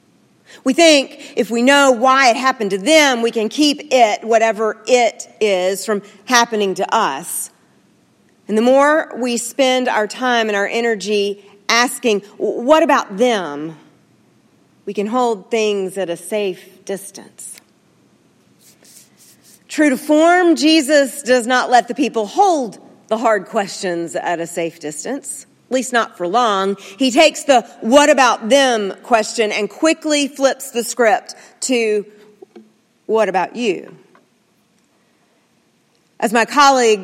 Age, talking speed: 40-59, 135 wpm